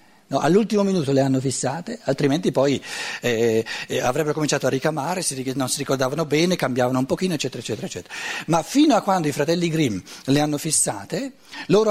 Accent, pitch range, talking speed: native, 130-185 Hz, 175 wpm